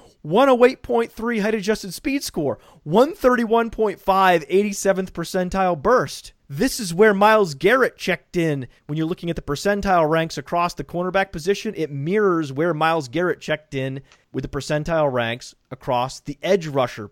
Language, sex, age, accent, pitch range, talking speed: English, male, 30-49, American, 145-210 Hz, 145 wpm